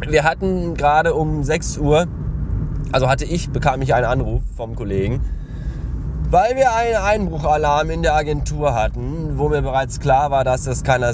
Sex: male